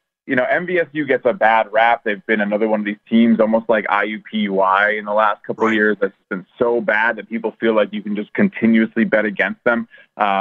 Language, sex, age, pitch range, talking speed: English, male, 30-49, 105-120 Hz, 225 wpm